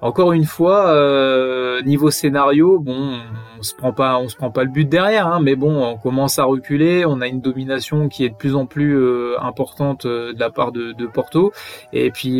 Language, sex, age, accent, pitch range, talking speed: French, male, 20-39, French, 125-150 Hz, 210 wpm